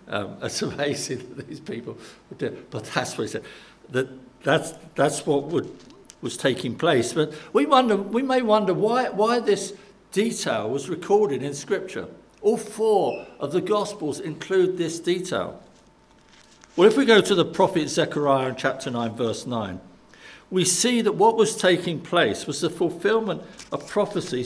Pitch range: 155-210 Hz